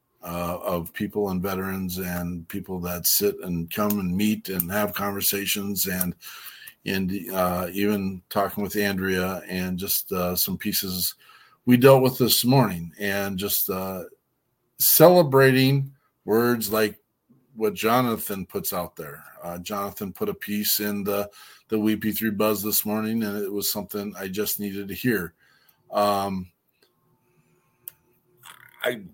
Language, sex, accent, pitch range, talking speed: English, male, American, 95-110 Hz, 140 wpm